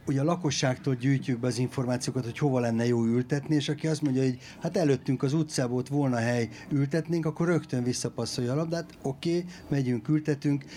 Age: 60-79